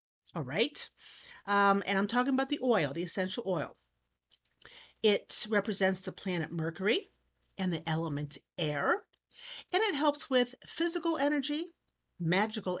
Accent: American